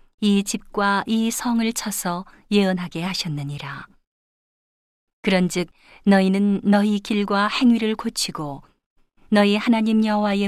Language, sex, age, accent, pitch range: Korean, female, 40-59, native, 175-210 Hz